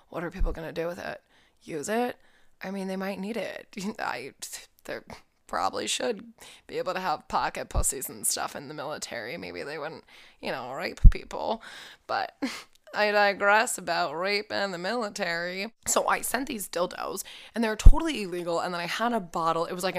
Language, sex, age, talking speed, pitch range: English, female, 20-39, 190 wpm, 170-215 Hz